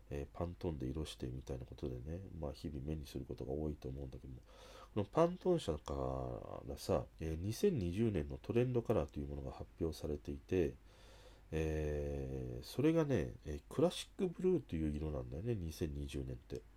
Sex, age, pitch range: male, 40-59, 75-125 Hz